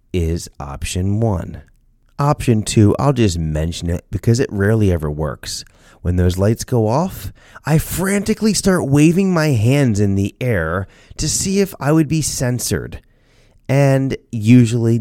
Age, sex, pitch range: 30-49, male, 95-125 Hz